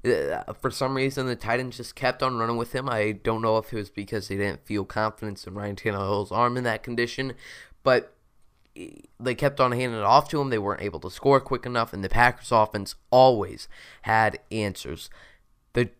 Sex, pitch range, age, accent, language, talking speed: male, 105-130 Hz, 20-39, American, English, 200 wpm